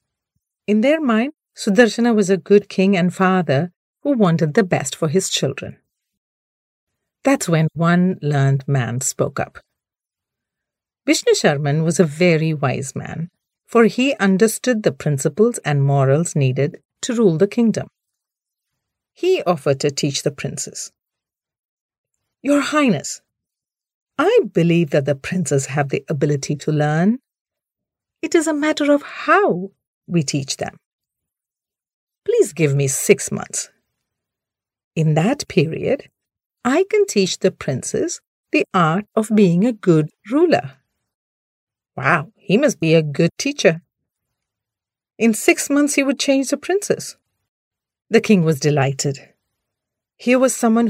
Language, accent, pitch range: English, Indian, 150-240 Hz